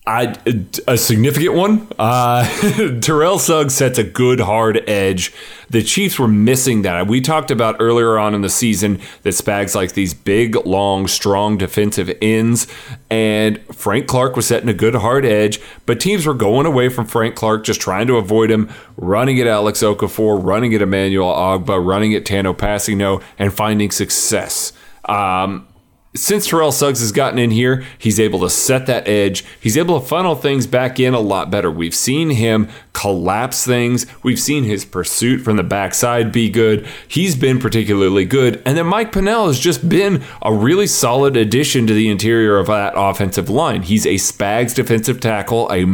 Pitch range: 100-125 Hz